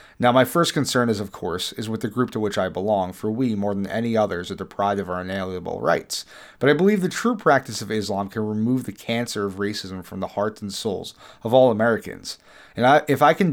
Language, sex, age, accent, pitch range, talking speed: English, male, 30-49, American, 105-130 Hz, 235 wpm